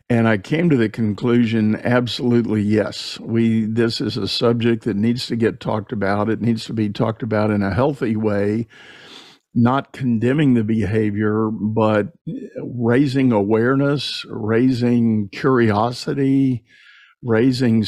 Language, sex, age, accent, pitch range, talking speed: English, male, 50-69, American, 110-130 Hz, 130 wpm